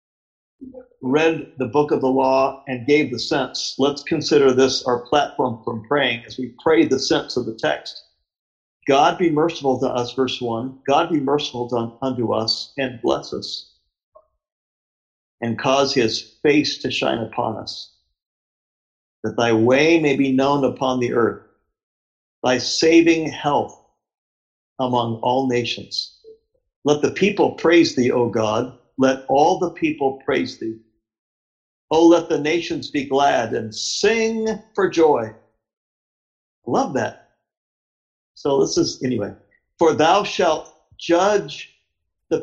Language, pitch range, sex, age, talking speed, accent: English, 120-165 Hz, male, 50-69, 135 wpm, American